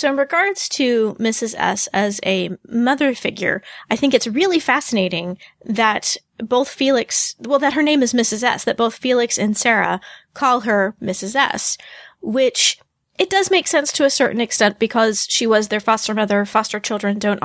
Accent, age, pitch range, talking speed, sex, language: American, 30-49, 205-250 Hz, 180 wpm, female, English